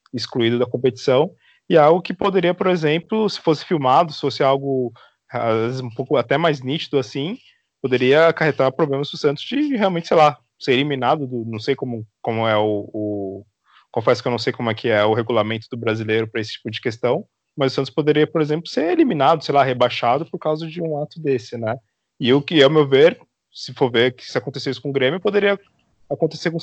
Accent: Brazilian